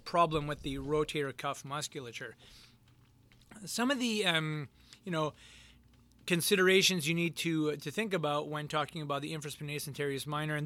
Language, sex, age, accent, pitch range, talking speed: English, male, 30-49, American, 150-195 Hz, 145 wpm